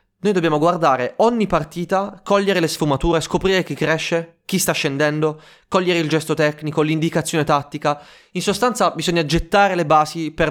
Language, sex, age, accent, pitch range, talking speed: Italian, male, 20-39, native, 130-170 Hz, 155 wpm